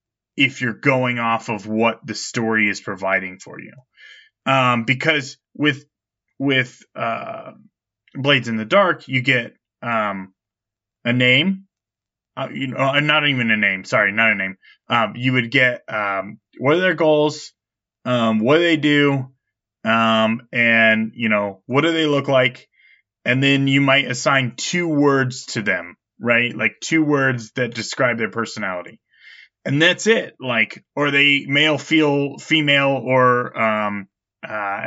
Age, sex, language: 20-39, male, English